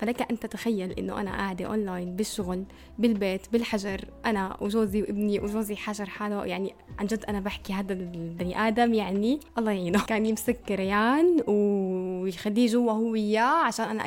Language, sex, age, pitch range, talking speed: Arabic, female, 20-39, 205-245 Hz, 160 wpm